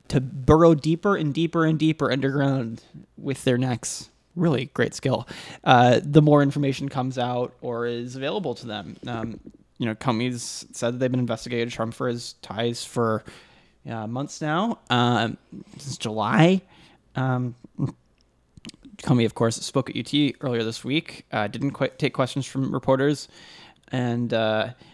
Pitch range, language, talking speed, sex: 120-155 Hz, English, 150 wpm, male